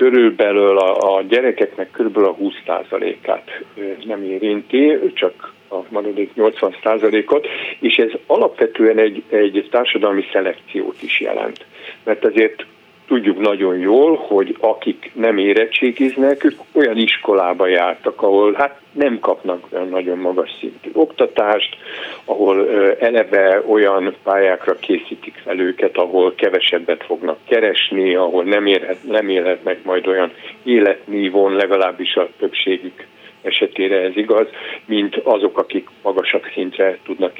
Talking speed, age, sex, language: 120 wpm, 50-69, male, Hungarian